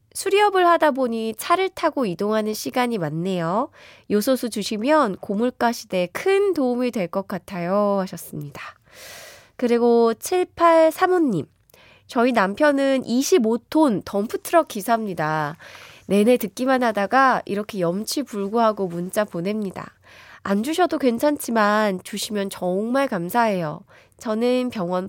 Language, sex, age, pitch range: Korean, female, 20-39, 195-305 Hz